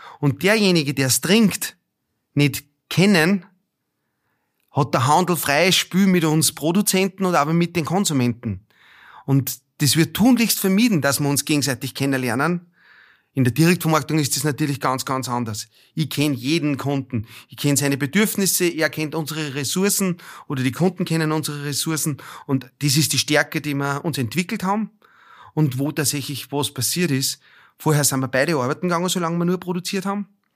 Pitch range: 130-170 Hz